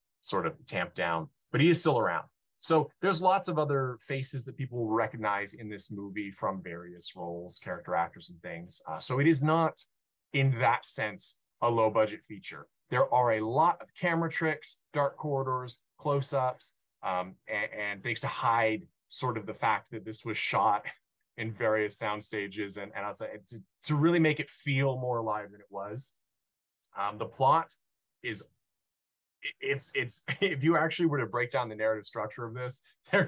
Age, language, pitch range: 30-49, English, 110-140 Hz